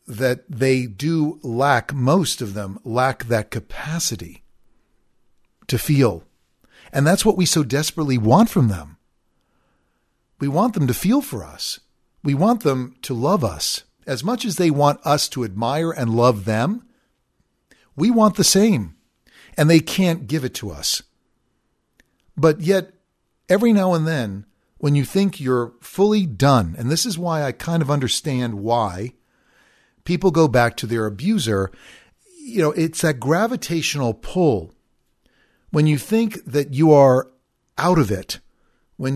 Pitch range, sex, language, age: 120-170 Hz, male, English, 50-69